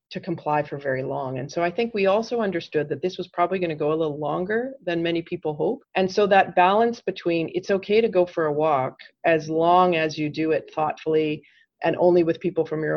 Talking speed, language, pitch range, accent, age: 230 wpm, English, 155-185 Hz, American, 40-59